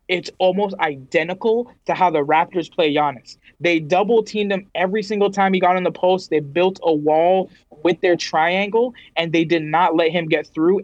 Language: English